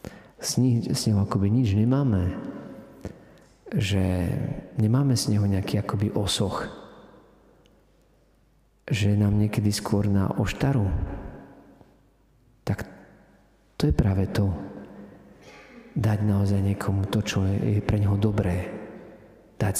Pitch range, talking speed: 95-110 Hz, 100 wpm